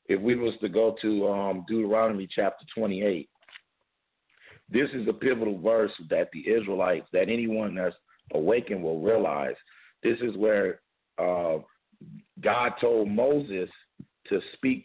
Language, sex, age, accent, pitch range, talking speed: English, male, 50-69, American, 100-125 Hz, 135 wpm